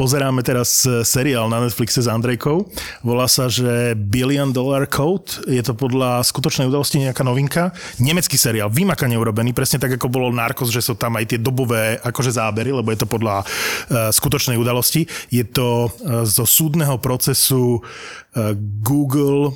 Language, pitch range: Slovak, 120-140 Hz